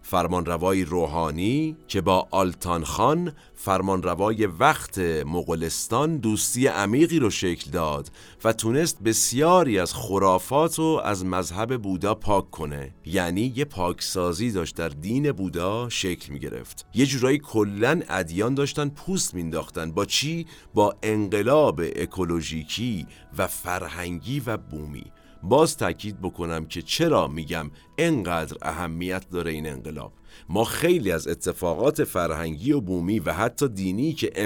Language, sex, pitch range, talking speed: Persian, male, 90-135 Hz, 130 wpm